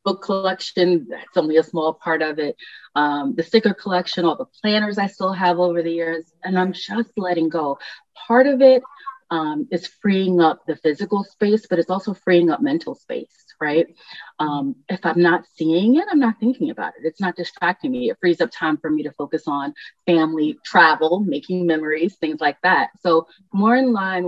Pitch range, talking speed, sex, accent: 160-205 Hz, 200 wpm, female, American